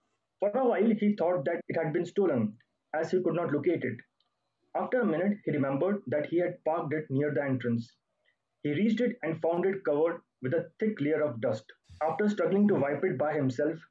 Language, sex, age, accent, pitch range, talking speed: English, male, 30-49, Indian, 145-195 Hz, 210 wpm